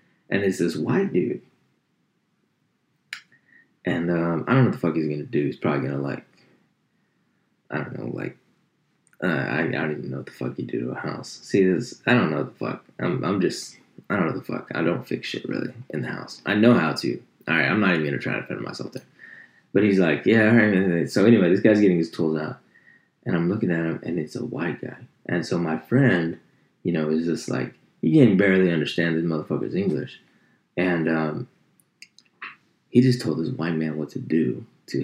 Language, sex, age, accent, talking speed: English, male, 20-39, American, 225 wpm